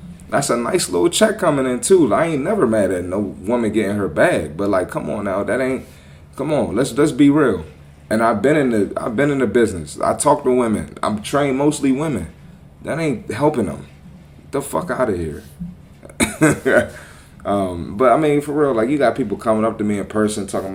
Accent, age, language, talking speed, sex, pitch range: American, 30-49, English, 220 wpm, male, 80-125 Hz